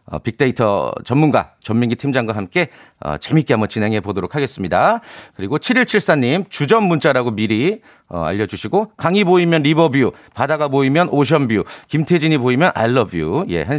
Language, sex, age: Korean, male, 40-59